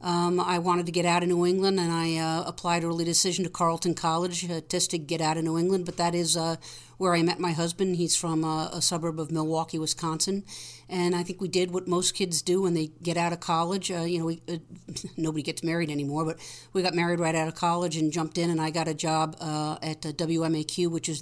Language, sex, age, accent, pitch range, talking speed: English, female, 50-69, American, 160-180 Hz, 250 wpm